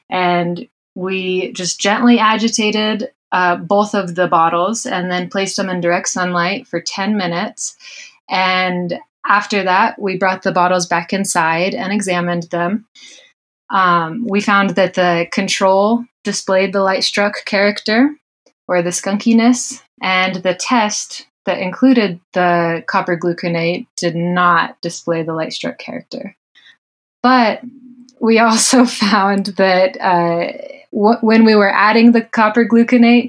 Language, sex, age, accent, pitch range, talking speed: English, female, 20-39, American, 180-220 Hz, 130 wpm